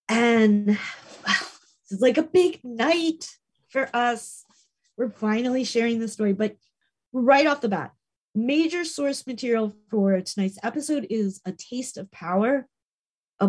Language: English